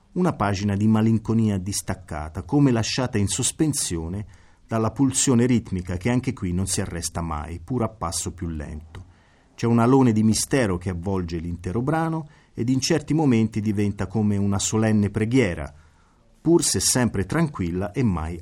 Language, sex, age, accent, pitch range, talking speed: Italian, male, 40-59, native, 90-125 Hz, 155 wpm